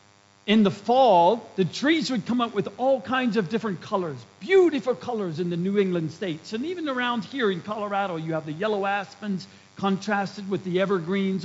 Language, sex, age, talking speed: English, male, 50-69, 190 wpm